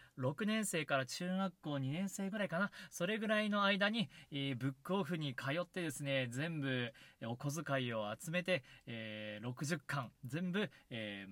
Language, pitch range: Japanese, 135-200 Hz